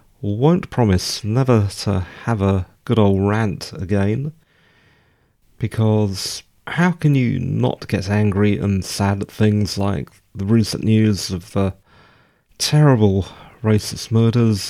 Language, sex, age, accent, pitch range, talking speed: English, male, 40-59, British, 95-120 Hz, 125 wpm